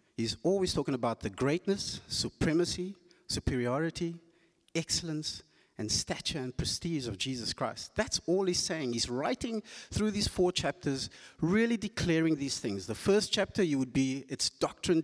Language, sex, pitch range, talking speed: English, male, 125-175 Hz, 150 wpm